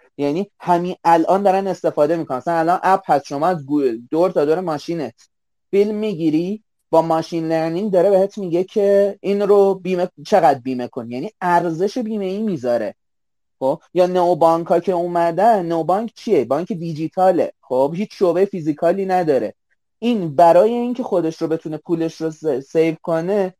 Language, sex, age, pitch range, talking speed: Persian, male, 30-49, 155-195 Hz, 165 wpm